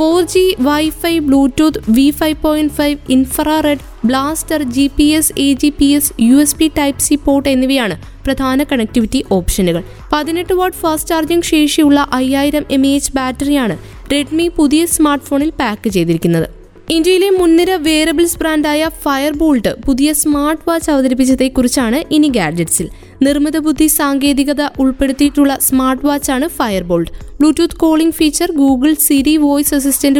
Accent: native